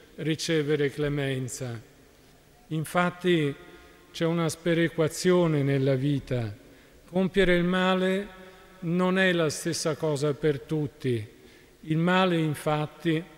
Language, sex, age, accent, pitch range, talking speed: Italian, male, 50-69, native, 145-175 Hz, 95 wpm